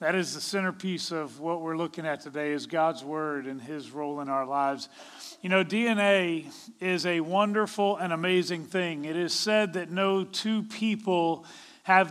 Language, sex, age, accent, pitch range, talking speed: English, male, 40-59, American, 175-210 Hz, 180 wpm